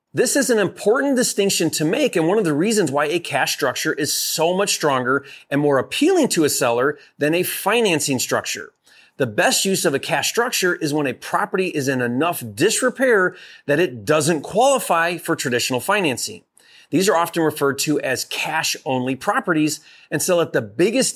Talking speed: 185 wpm